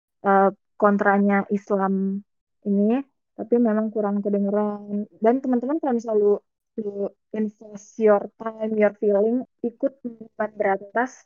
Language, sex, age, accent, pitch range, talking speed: Indonesian, female, 20-39, native, 200-245 Hz, 95 wpm